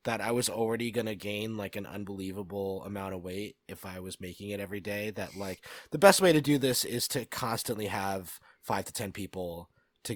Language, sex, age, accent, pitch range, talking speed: English, male, 20-39, American, 95-120 Hz, 220 wpm